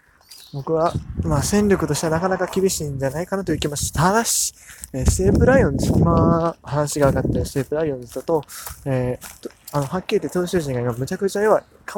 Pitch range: 125-190 Hz